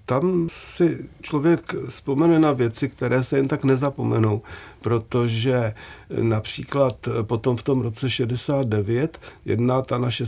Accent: native